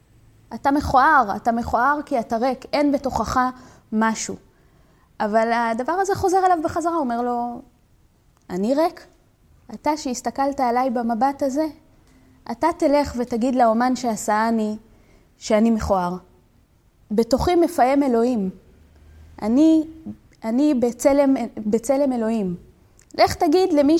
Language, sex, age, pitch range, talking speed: Hebrew, female, 20-39, 220-285 Hz, 110 wpm